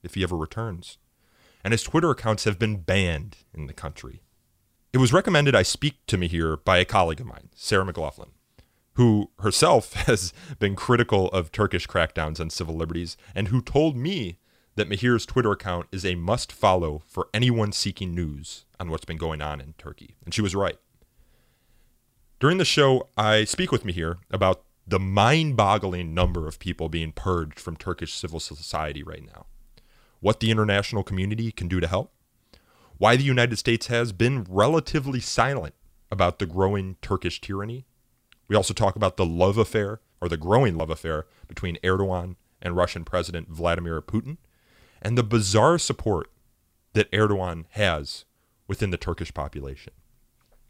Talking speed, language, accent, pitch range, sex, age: 160 wpm, English, American, 85-110 Hz, male, 30-49